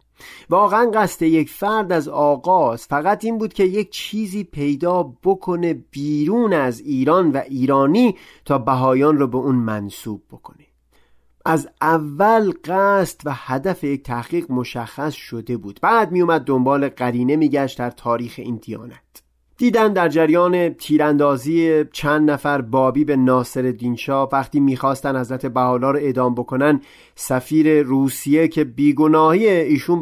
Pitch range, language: 130-170 Hz, Persian